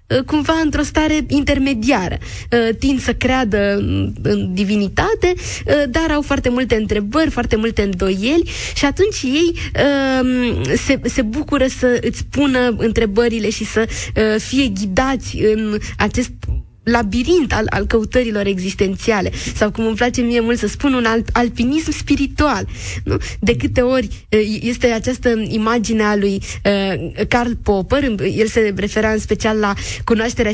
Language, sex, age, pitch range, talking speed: Romanian, female, 20-39, 215-275 Hz, 130 wpm